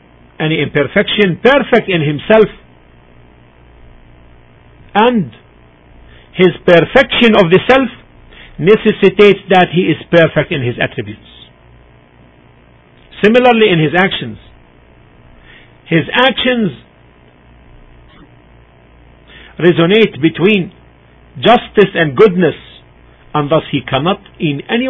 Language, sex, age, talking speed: English, male, 50-69, 85 wpm